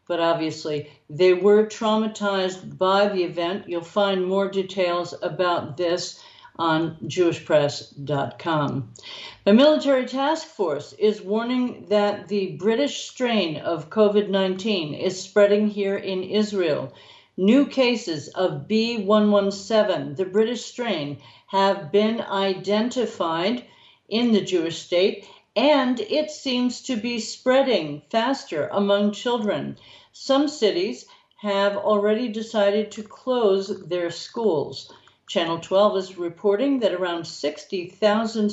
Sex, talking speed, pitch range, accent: female, 115 wpm, 175-220 Hz, American